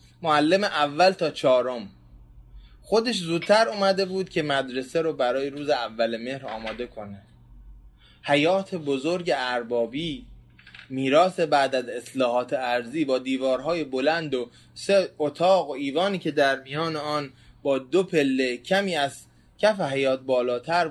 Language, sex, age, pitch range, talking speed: Persian, male, 20-39, 125-175 Hz, 130 wpm